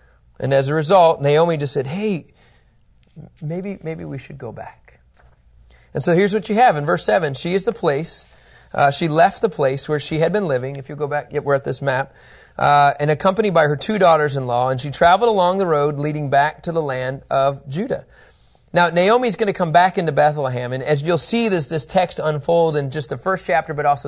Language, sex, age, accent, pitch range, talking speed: English, male, 30-49, American, 135-180 Hz, 220 wpm